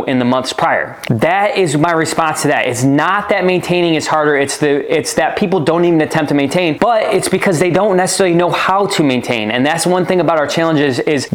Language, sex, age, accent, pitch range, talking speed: English, male, 20-39, American, 135-170 Hz, 235 wpm